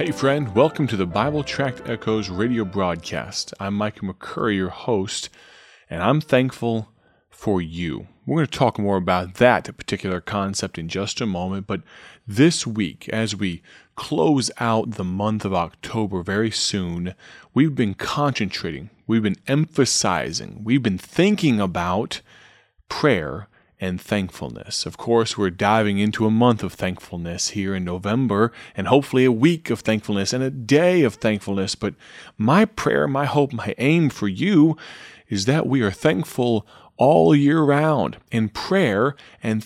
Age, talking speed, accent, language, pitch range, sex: 30-49, 155 wpm, American, English, 100-125 Hz, male